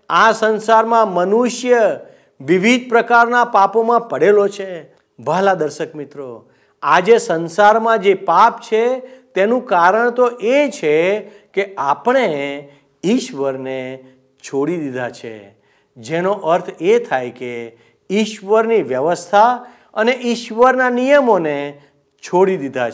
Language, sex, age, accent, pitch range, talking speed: Gujarati, male, 50-69, native, 150-230 Hz, 100 wpm